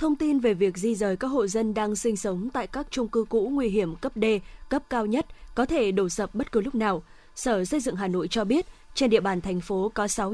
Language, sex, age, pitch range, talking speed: Vietnamese, female, 20-39, 210-260 Hz, 265 wpm